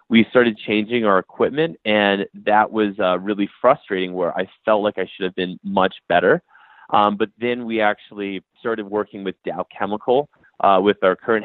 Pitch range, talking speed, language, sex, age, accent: 95-115 Hz, 185 wpm, English, male, 30-49, American